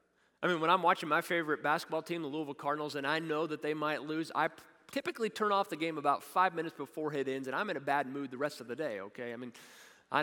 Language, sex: English, male